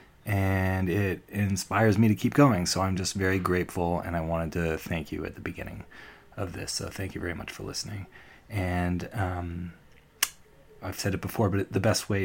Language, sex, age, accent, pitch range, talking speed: English, male, 30-49, American, 85-100 Hz, 195 wpm